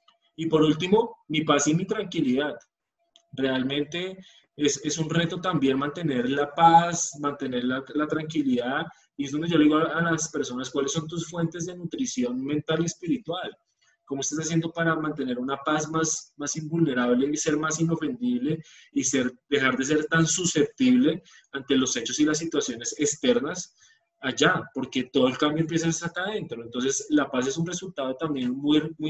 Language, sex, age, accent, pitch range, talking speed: Spanish, male, 20-39, Colombian, 140-175 Hz, 175 wpm